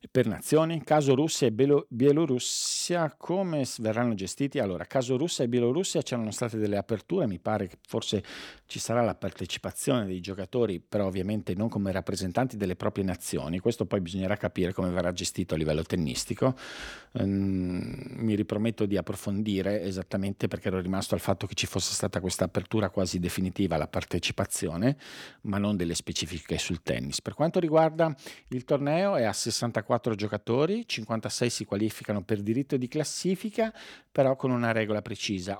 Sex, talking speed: male, 160 wpm